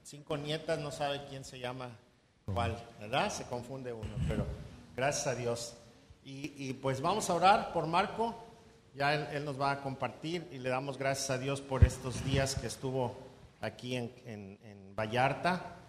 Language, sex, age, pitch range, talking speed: Spanish, male, 50-69, 115-140 Hz, 180 wpm